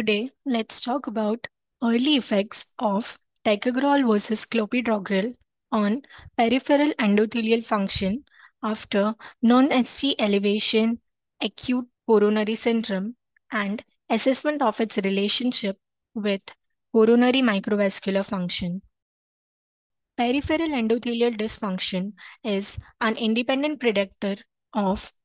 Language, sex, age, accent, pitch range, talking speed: English, female, 20-39, Indian, 205-240 Hz, 90 wpm